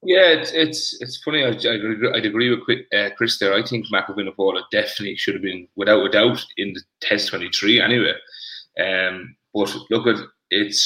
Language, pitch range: English, 100-115 Hz